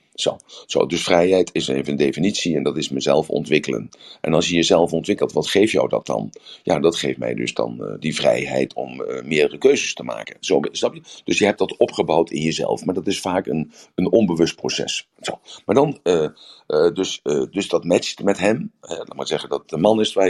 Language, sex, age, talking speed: Dutch, male, 50-69, 215 wpm